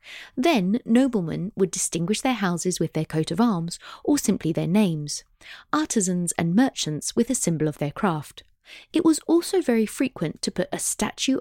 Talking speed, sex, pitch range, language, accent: 175 wpm, female, 165-245 Hz, English, British